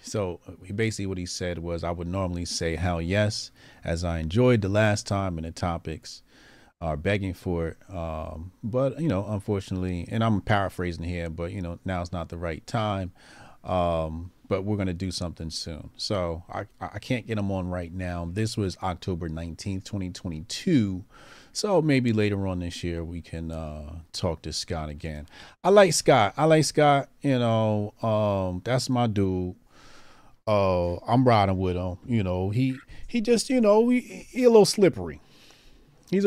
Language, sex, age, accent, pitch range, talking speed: English, male, 40-59, American, 90-125 Hz, 180 wpm